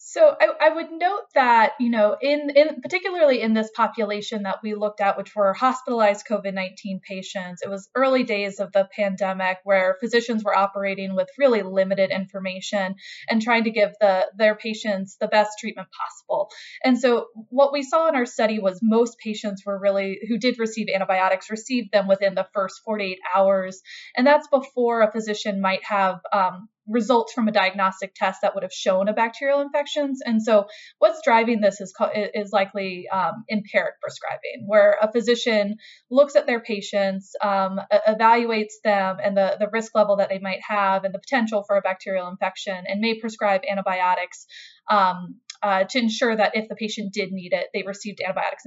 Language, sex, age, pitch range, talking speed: English, female, 20-39, 195-245 Hz, 180 wpm